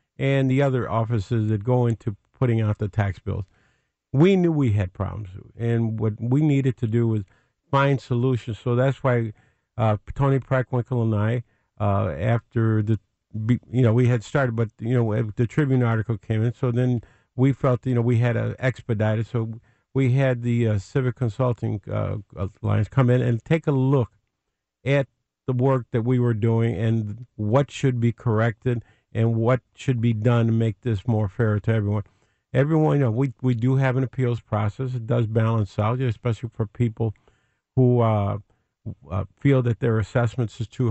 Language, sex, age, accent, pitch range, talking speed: English, male, 50-69, American, 110-130 Hz, 185 wpm